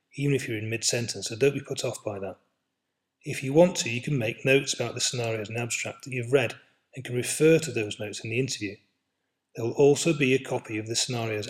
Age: 40-59